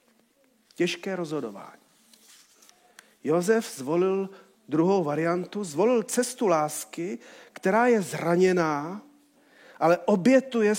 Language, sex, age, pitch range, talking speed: Czech, male, 40-59, 180-235 Hz, 80 wpm